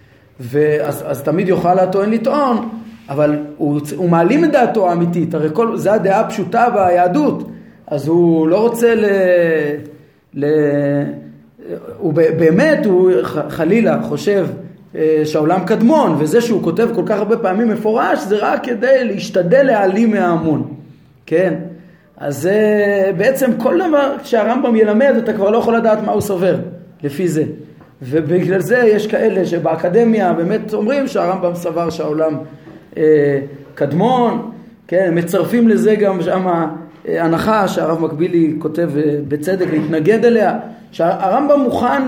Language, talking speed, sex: Hebrew, 125 wpm, male